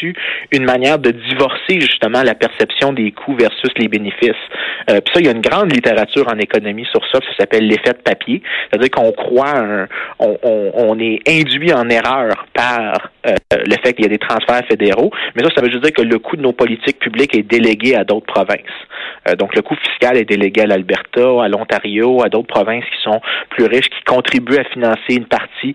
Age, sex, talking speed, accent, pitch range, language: 30-49, male, 210 wpm, Canadian, 115-155 Hz, French